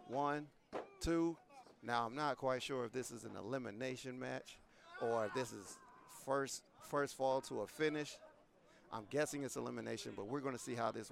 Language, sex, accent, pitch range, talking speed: English, male, American, 125-165 Hz, 180 wpm